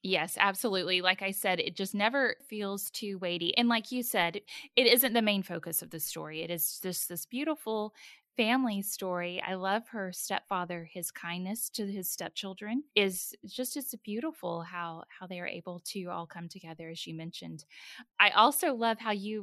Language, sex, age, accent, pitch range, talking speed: English, female, 10-29, American, 180-245 Hz, 185 wpm